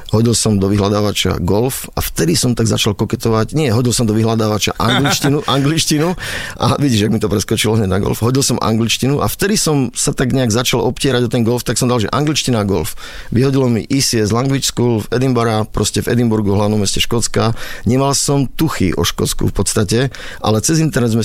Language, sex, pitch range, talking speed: Slovak, male, 105-125 Hz, 200 wpm